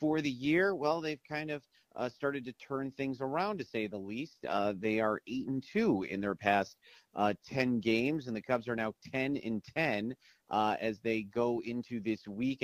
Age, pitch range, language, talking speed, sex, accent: 40-59, 110-135 Hz, English, 190 wpm, male, American